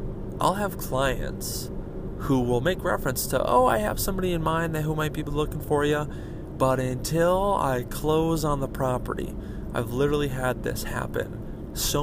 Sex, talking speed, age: male, 170 wpm, 30-49